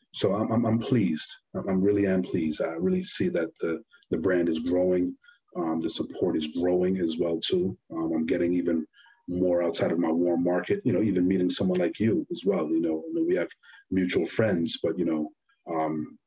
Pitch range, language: 85-115 Hz, English